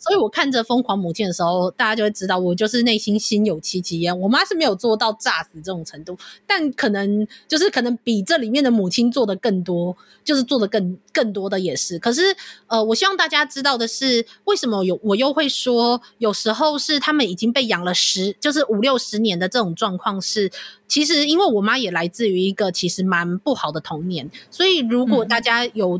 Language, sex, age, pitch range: Chinese, female, 20-39, 190-255 Hz